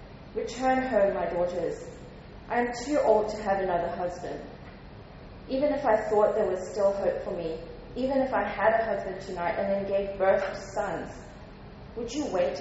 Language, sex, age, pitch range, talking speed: English, female, 30-49, 185-225 Hz, 180 wpm